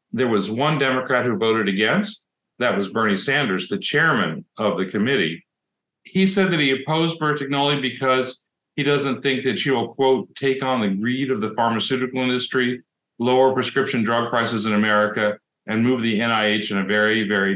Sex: male